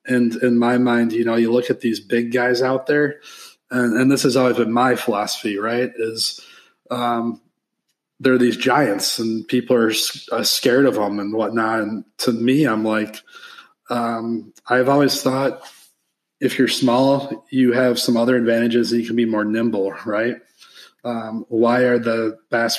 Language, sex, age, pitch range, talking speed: English, male, 20-39, 110-125 Hz, 175 wpm